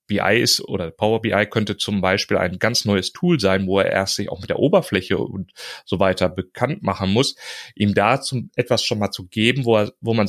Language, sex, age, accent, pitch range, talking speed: German, male, 30-49, German, 100-120 Hz, 220 wpm